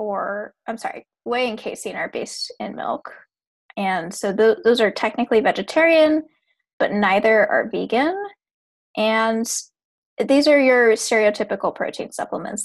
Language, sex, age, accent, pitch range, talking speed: English, female, 10-29, American, 210-280 Hz, 130 wpm